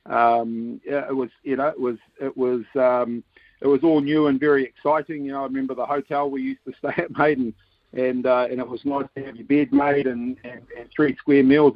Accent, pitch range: Australian, 120-140 Hz